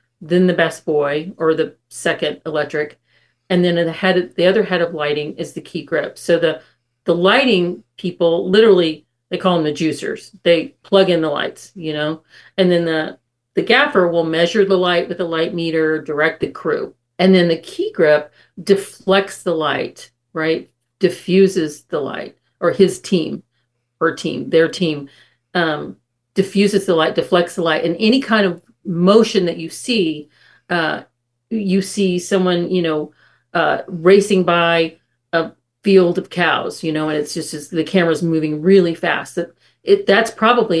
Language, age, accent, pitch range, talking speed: English, 40-59, American, 155-190 Hz, 170 wpm